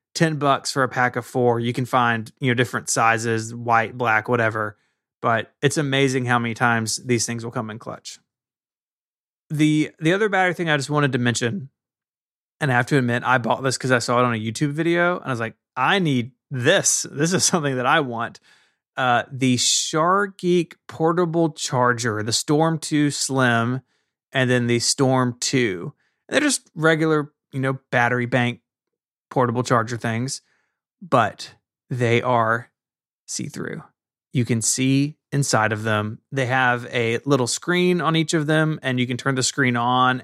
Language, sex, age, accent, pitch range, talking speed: English, male, 20-39, American, 120-155 Hz, 175 wpm